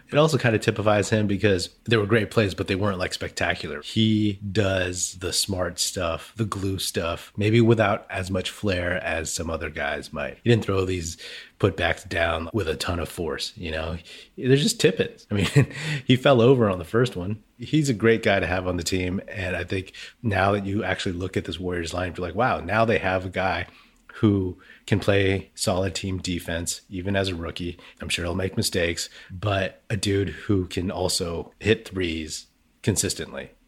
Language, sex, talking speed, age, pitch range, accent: English, male, 200 wpm, 30-49, 90-110 Hz, American